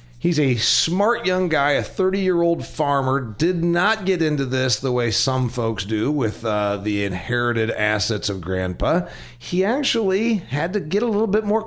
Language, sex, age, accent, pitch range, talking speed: English, male, 40-59, American, 110-165 Hz, 175 wpm